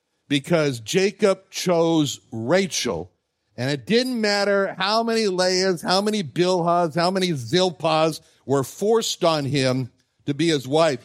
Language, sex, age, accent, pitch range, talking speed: English, male, 60-79, American, 140-185 Hz, 135 wpm